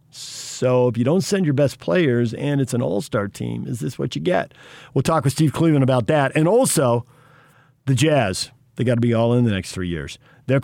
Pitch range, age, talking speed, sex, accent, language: 125-155 Hz, 50-69, 220 wpm, male, American, English